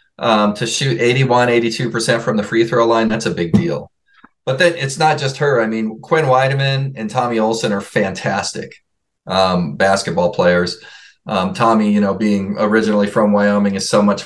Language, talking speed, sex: English, 180 wpm, male